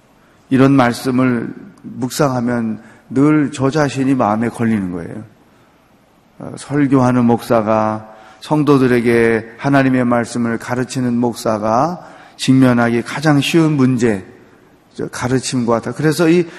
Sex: male